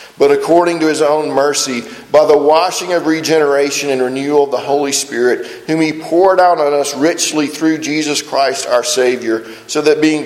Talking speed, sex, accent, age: 185 wpm, male, American, 40-59